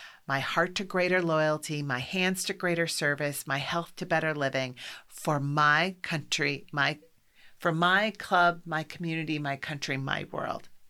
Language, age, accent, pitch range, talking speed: English, 40-59, American, 140-175 Hz, 155 wpm